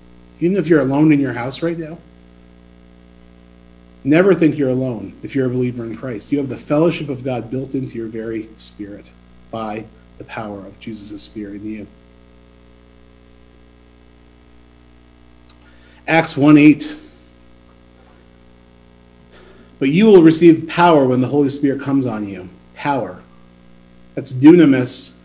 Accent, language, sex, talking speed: American, English, male, 130 wpm